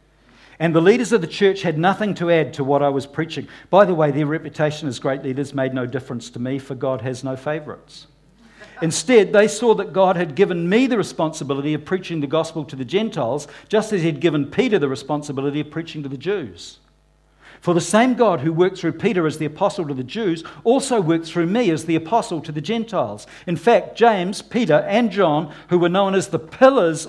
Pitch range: 145-200 Hz